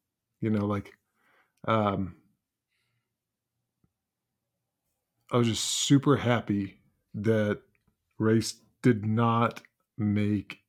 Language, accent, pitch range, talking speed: English, American, 105-125 Hz, 80 wpm